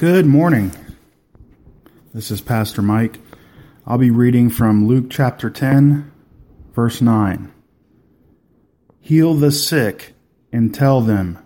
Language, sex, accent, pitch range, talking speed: English, male, American, 105-135 Hz, 110 wpm